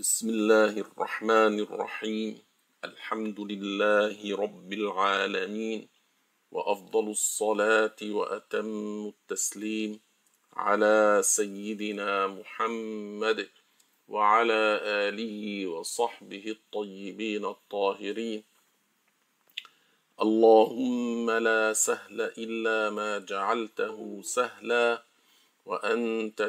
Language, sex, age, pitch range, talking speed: Arabic, male, 50-69, 105-115 Hz, 65 wpm